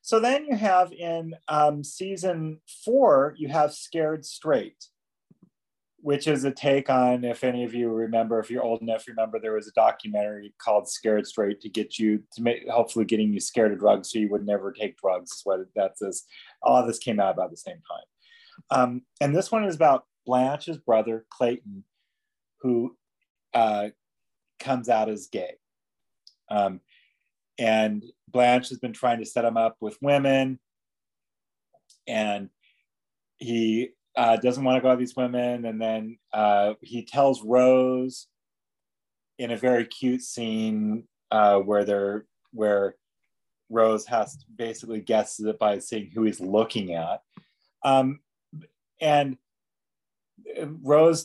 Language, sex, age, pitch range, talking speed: English, male, 30-49, 110-145 Hz, 150 wpm